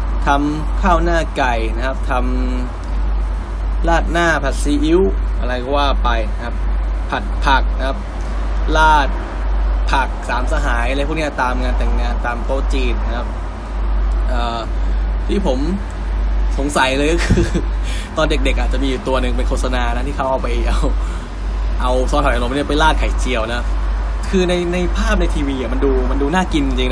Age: 20-39